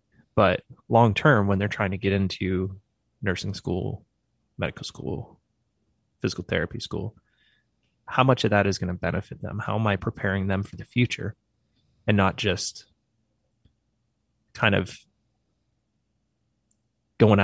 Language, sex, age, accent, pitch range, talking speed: English, male, 20-39, American, 95-115 Hz, 130 wpm